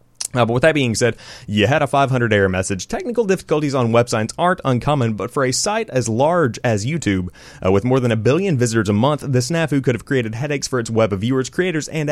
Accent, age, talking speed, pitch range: American, 30-49, 235 wpm, 105-150 Hz